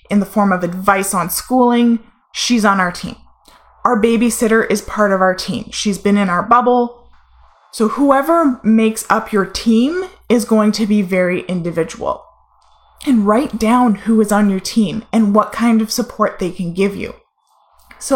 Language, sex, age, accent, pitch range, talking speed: English, female, 20-39, American, 200-245 Hz, 175 wpm